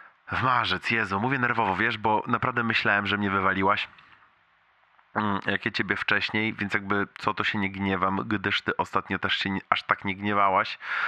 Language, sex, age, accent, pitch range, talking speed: Polish, male, 20-39, native, 100-120 Hz, 180 wpm